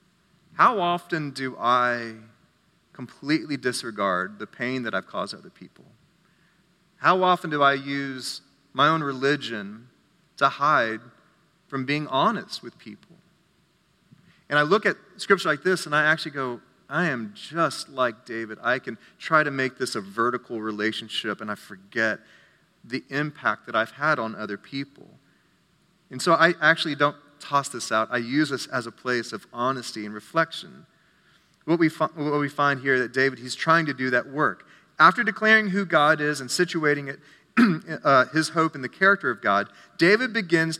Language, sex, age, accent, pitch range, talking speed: English, male, 30-49, American, 125-170 Hz, 170 wpm